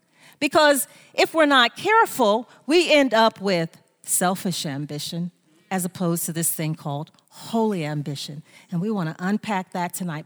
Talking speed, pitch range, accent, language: 150 wpm, 185-285 Hz, American, English